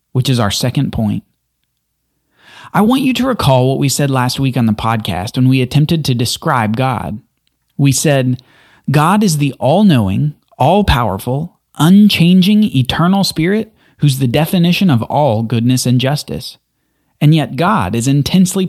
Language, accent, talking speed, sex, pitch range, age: English, American, 150 wpm, male, 120-175 Hz, 30-49